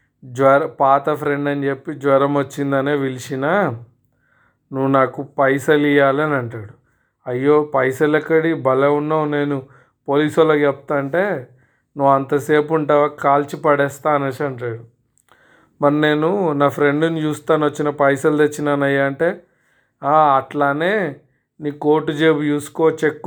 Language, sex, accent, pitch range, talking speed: Telugu, male, native, 135-150 Hz, 115 wpm